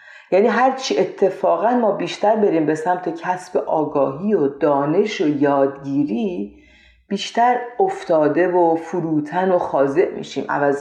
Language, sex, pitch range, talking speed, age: Persian, female, 160-245 Hz, 120 wpm, 40-59